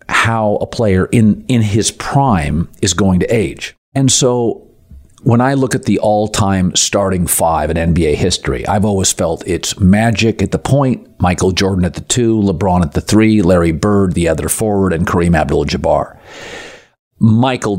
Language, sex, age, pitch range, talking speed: English, male, 50-69, 90-115 Hz, 170 wpm